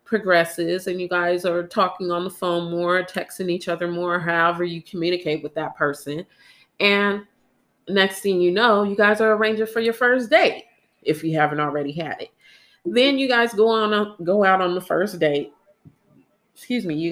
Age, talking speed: 30-49, 185 wpm